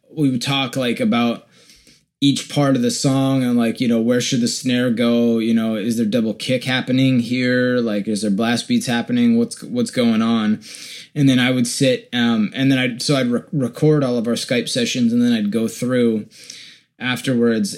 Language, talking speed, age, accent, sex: English, 205 wpm, 20-39, American, male